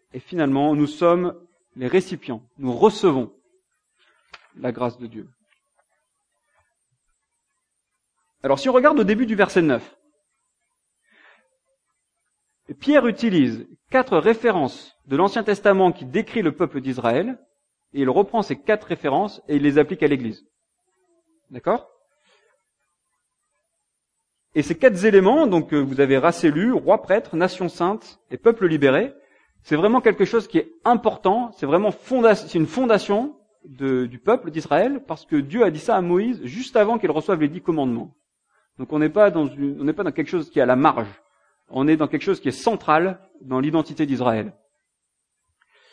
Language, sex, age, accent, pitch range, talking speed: English, male, 40-59, French, 150-230 Hz, 160 wpm